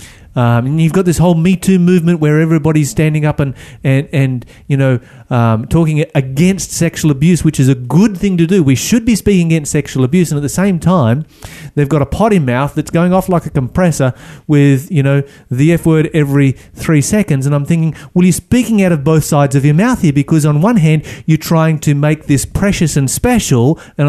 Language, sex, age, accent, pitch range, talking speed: English, male, 30-49, Australian, 125-170 Hz, 220 wpm